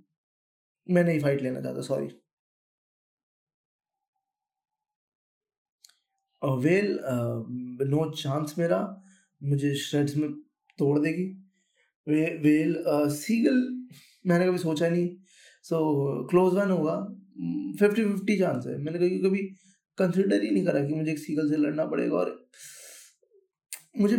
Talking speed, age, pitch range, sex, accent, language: 125 wpm, 20-39, 150-205 Hz, male, native, Hindi